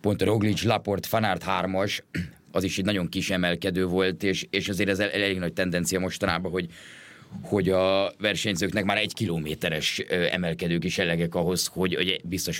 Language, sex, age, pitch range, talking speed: Hungarian, male, 30-49, 95-110 Hz, 170 wpm